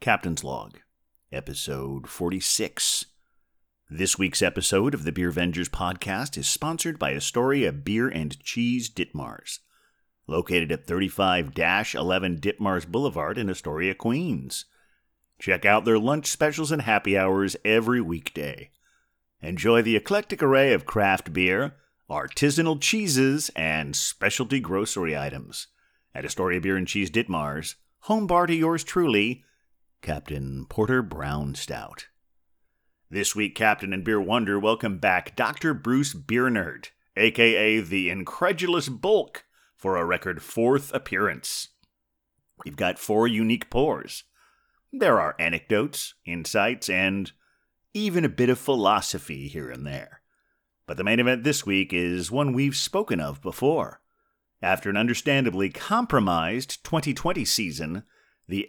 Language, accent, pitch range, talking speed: English, American, 90-130 Hz, 125 wpm